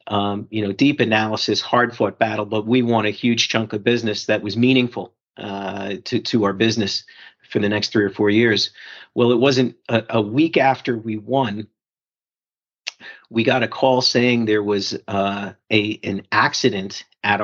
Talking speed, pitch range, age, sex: 180 wpm, 105-120 Hz, 40-59, male